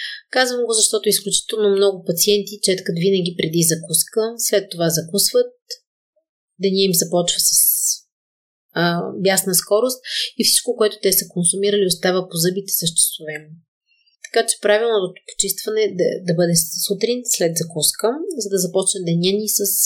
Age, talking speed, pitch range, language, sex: 30-49, 140 wpm, 170-210 Hz, Bulgarian, female